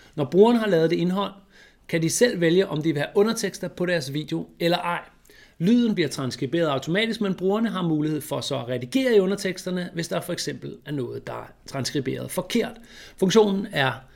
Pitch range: 140-200 Hz